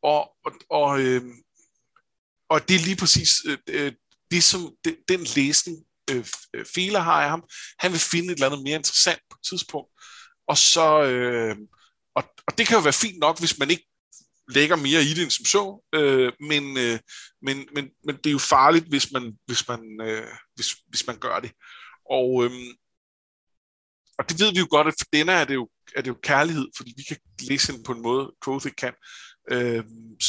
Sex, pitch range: male, 125-170 Hz